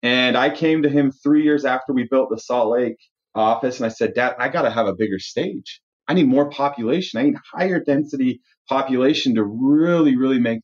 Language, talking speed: English, 215 wpm